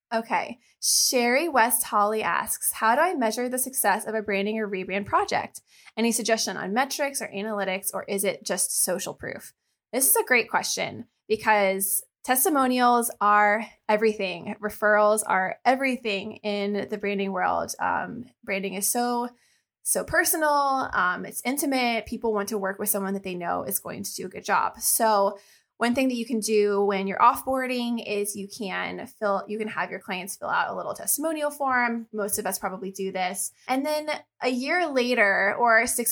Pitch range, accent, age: 200-245 Hz, American, 20-39